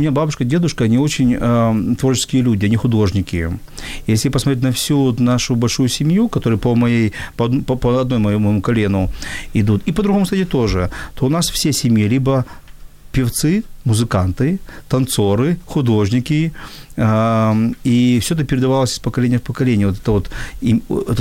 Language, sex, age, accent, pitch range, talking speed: Ukrainian, male, 40-59, native, 110-130 Hz, 160 wpm